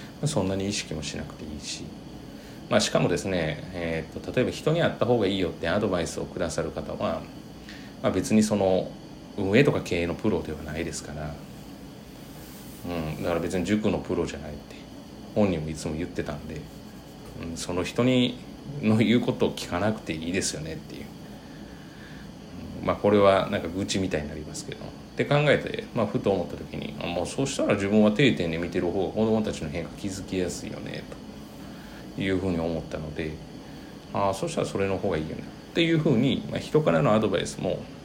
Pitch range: 80-110 Hz